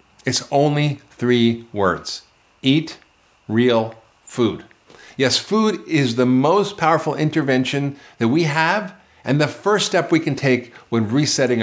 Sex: male